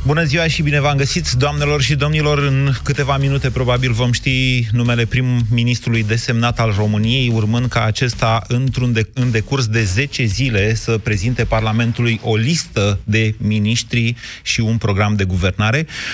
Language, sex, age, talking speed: Romanian, male, 30-49, 150 wpm